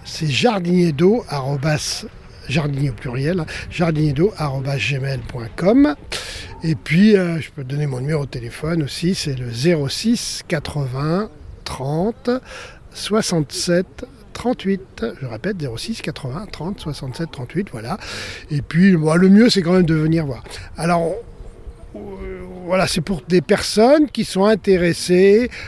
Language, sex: French, male